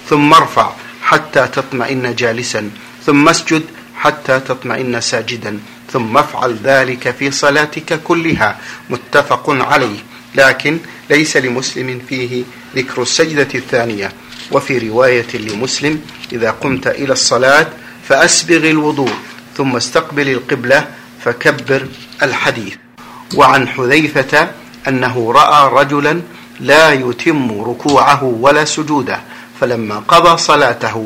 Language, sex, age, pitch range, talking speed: Arabic, male, 50-69, 120-145 Hz, 100 wpm